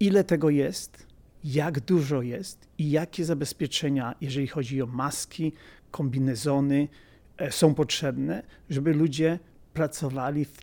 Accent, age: native, 40-59